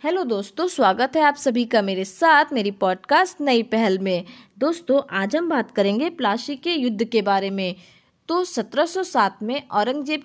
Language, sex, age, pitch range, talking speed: Hindi, female, 20-39, 215-290 Hz, 170 wpm